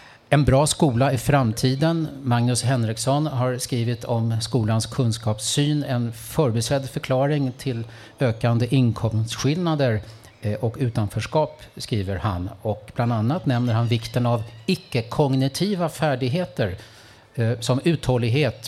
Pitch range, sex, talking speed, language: 110-135 Hz, male, 105 wpm, Swedish